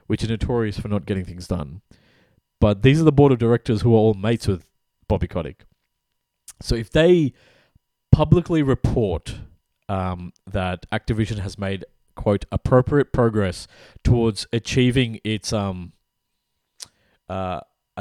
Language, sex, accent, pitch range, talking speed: English, male, Australian, 95-120 Hz, 135 wpm